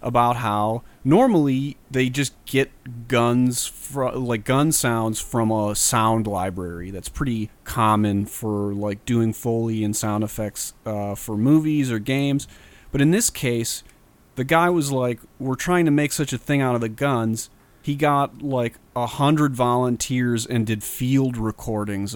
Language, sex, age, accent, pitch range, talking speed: English, male, 30-49, American, 110-140 Hz, 160 wpm